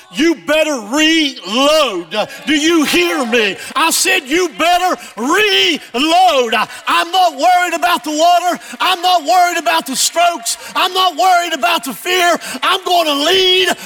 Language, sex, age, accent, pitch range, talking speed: English, male, 40-59, American, 220-350 Hz, 145 wpm